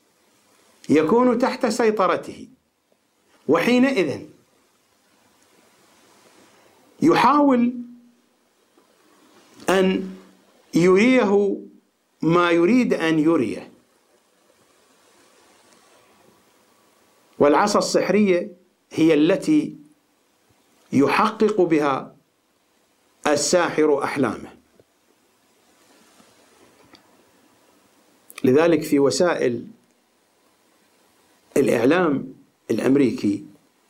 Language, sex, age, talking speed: English, male, 60-79, 40 wpm